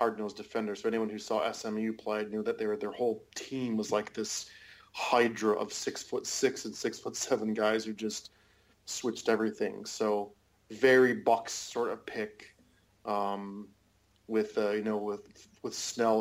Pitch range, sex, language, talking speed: 105-120 Hz, male, English, 170 wpm